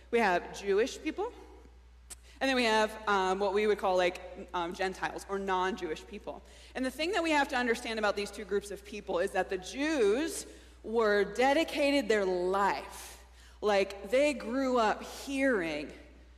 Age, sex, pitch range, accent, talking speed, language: 20-39, female, 185-265 Hz, American, 170 wpm, English